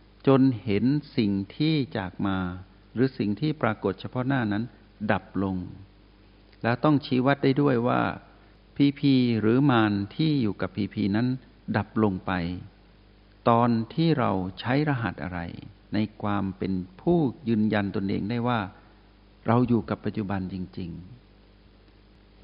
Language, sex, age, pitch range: Thai, male, 60-79, 100-125 Hz